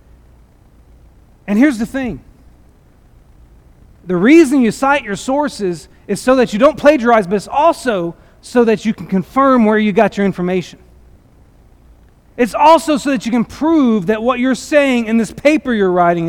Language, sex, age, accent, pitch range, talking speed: English, male, 40-59, American, 180-270 Hz, 165 wpm